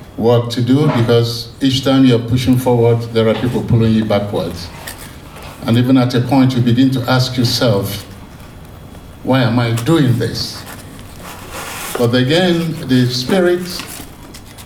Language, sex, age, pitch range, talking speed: Finnish, male, 50-69, 110-130 Hz, 145 wpm